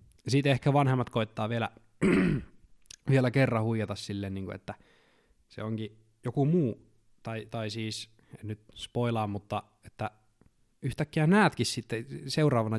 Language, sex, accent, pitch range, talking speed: Finnish, male, native, 100-120 Hz, 125 wpm